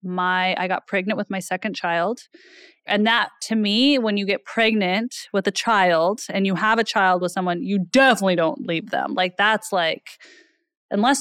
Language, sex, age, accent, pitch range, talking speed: English, female, 20-39, American, 180-215 Hz, 185 wpm